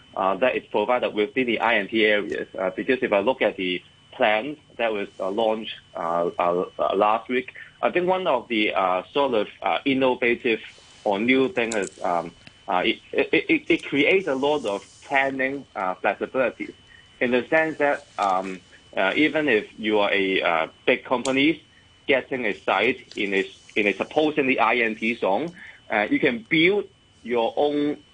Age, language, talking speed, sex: 30-49, English, 170 wpm, male